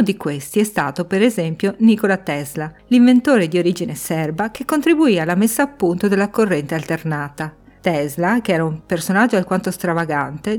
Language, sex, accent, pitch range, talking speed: Italian, female, native, 165-220 Hz, 160 wpm